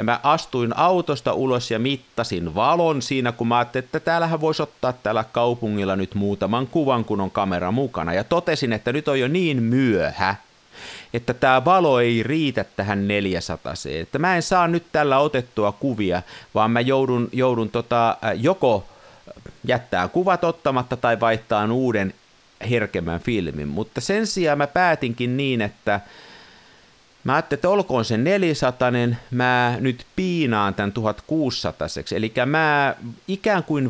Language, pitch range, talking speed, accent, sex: Finnish, 105-145 Hz, 150 wpm, native, male